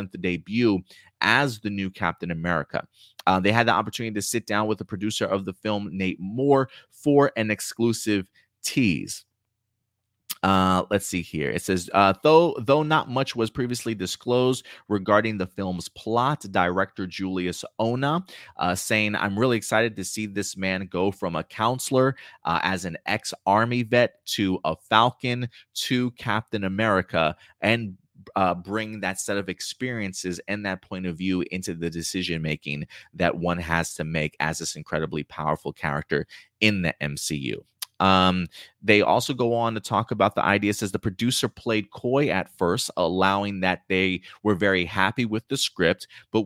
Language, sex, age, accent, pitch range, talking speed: English, male, 30-49, American, 90-115 Hz, 165 wpm